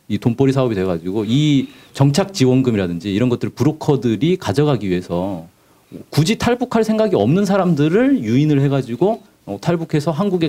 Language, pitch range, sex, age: Korean, 105-150 Hz, male, 40-59